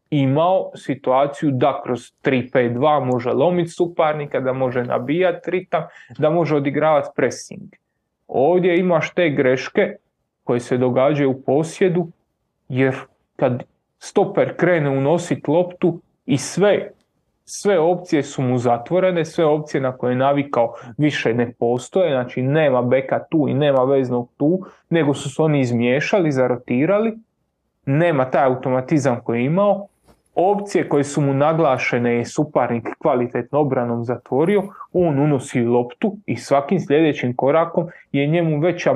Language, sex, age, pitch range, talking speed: Croatian, male, 30-49, 130-170 Hz, 135 wpm